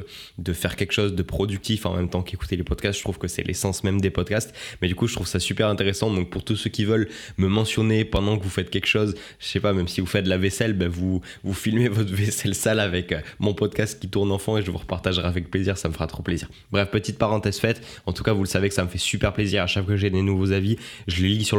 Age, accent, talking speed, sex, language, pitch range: 20-39, French, 290 wpm, male, French, 95-110 Hz